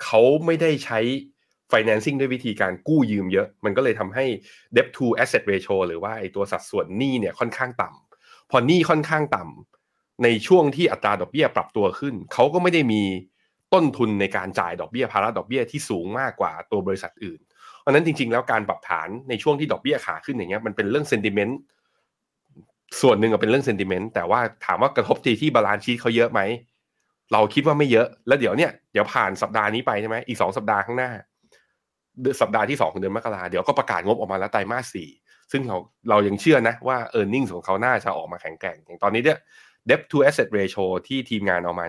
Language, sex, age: Thai, male, 20-39